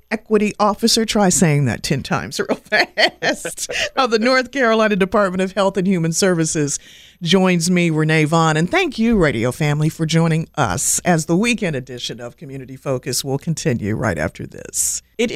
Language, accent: English, American